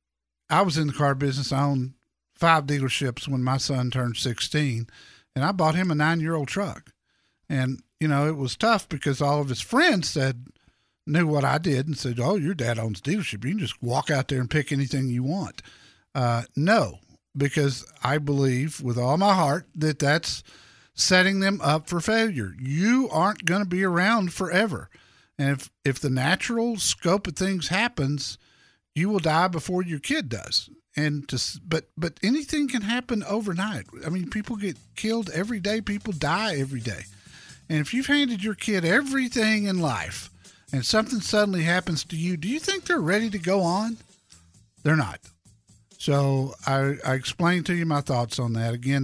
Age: 50-69